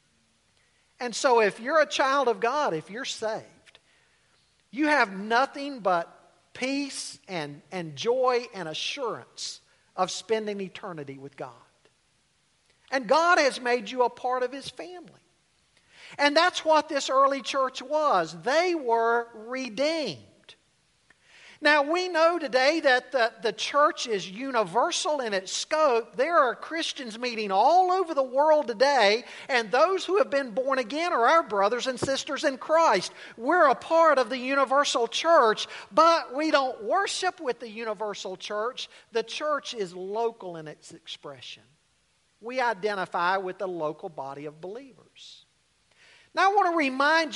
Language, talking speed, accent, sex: English, 150 wpm, American, male